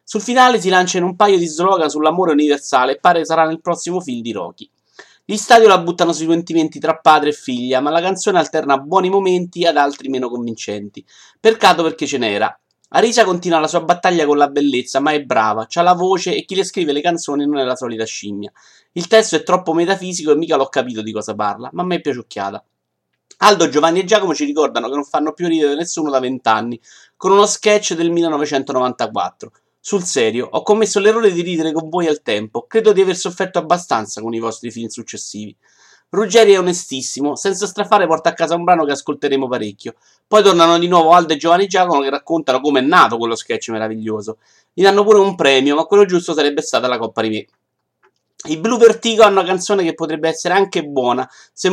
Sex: male